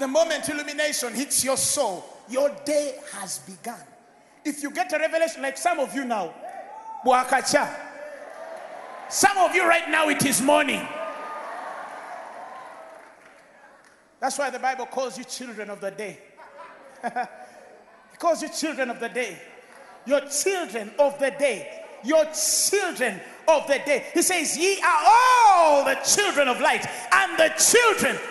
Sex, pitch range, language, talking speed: male, 280-370 Hz, English, 140 wpm